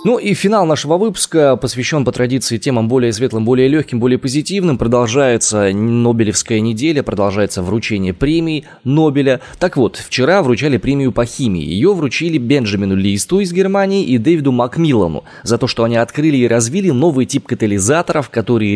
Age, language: 20-39, Russian